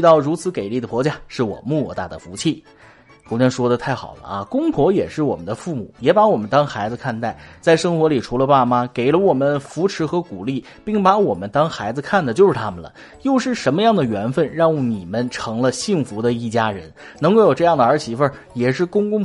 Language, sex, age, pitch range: Chinese, male, 30-49, 120-185 Hz